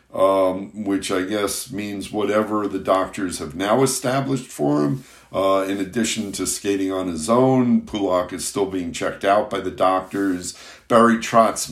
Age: 60-79